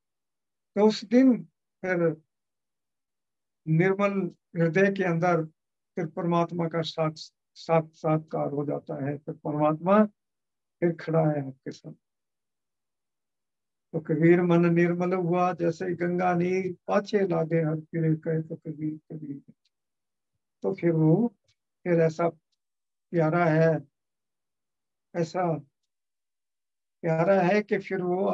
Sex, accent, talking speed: male, Indian, 75 wpm